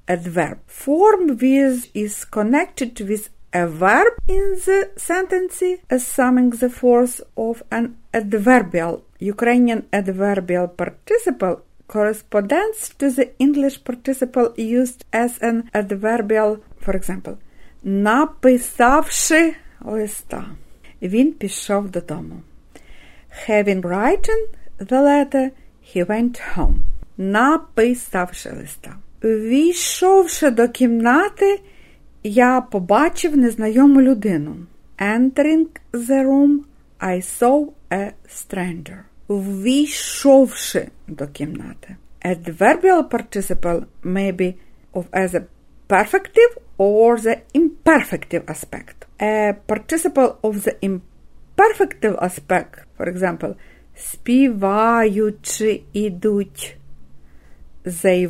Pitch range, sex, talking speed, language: 195-275 Hz, female, 85 wpm, Ukrainian